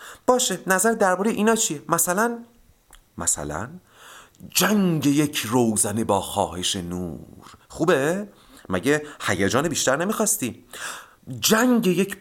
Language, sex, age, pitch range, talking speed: Persian, male, 40-59, 100-160 Hz, 100 wpm